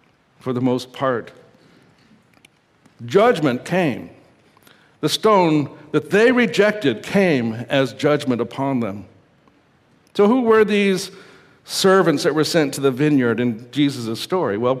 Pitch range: 135-195 Hz